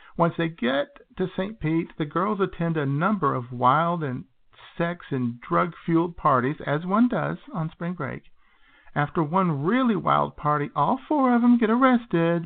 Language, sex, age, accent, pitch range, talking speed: English, male, 50-69, American, 130-190 Hz, 170 wpm